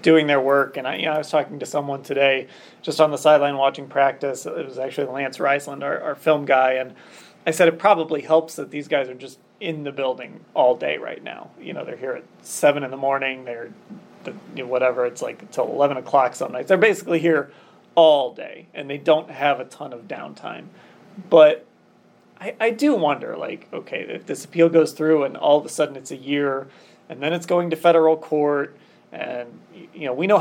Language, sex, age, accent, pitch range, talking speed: English, male, 30-49, American, 135-160 Hz, 215 wpm